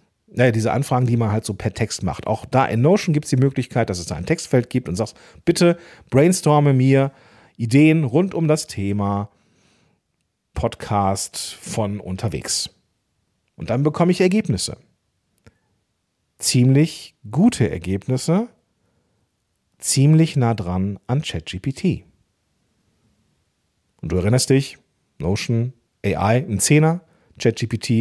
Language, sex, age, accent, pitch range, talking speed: German, male, 40-59, German, 110-145 Hz, 125 wpm